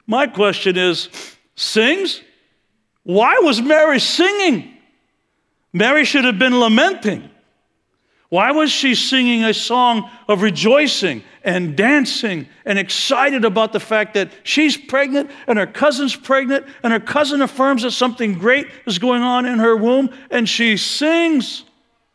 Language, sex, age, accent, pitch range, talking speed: English, male, 60-79, American, 190-260 Hz, 140 wpm